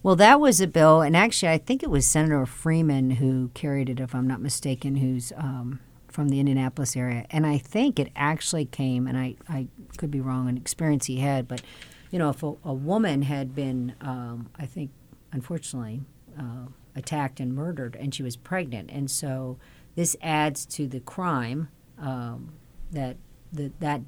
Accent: American